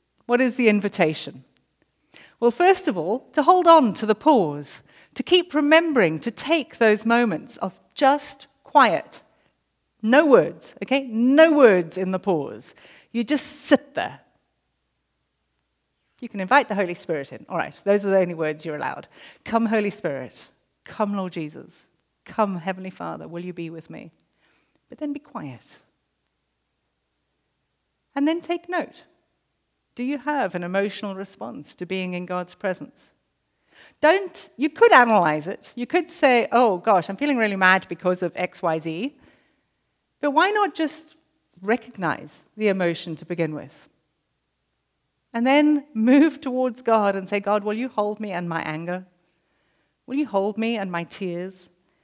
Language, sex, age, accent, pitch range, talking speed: English, female, 50-69, British, 180-280 Hz, 155 wpm